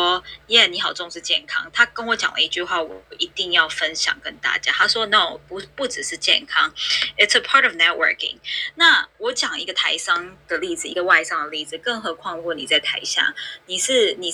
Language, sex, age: Chinese, female, 20-39